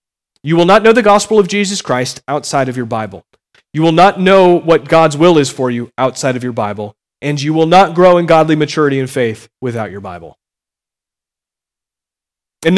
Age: 30-49